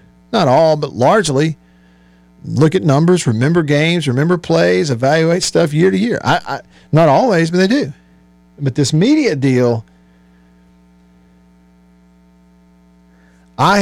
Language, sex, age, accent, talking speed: English, male, 50-69, American, 120 wpm